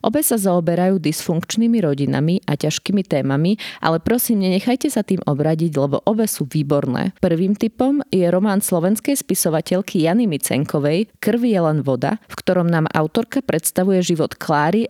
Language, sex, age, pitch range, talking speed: Slovak, female, 30-49, 155-205 Hz, 150 wpm